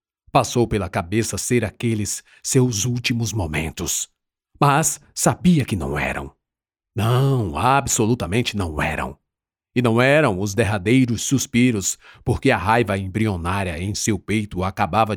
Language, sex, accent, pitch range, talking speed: Portuguese, male, Brazilian, 95-125 Hz, 125 wpm